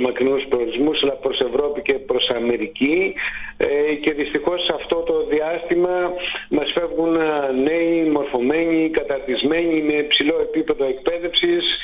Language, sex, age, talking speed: Greek, male, 50-69, 110 wpm